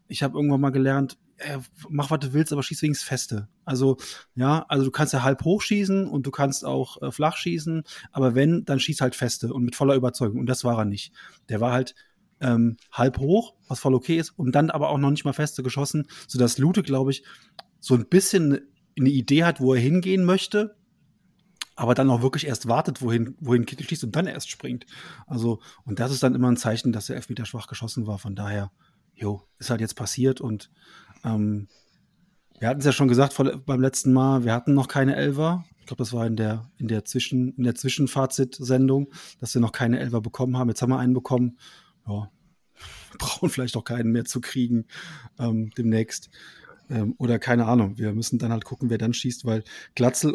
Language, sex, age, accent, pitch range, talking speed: German, male, 30-49, German, 120-145 Hz, 215 wpm